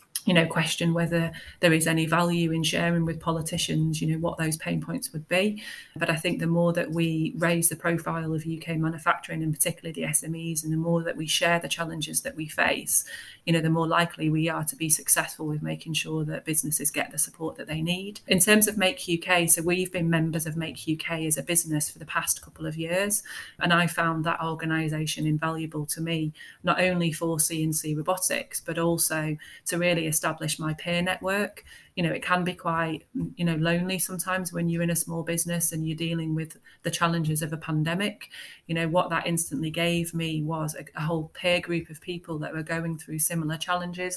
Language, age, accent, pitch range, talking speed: English, 30-49, British, 160-170 Hz, 215 wpm